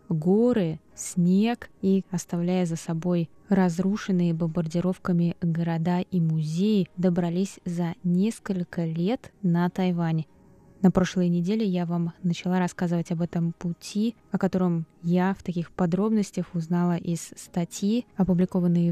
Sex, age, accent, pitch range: female, 20-39, native, 175-205 Hz